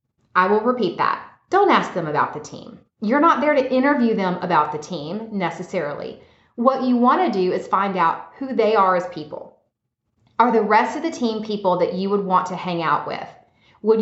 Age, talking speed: 30-49, 210 wpm